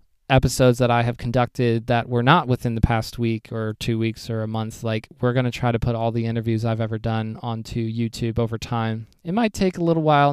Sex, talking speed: male, 240 wpm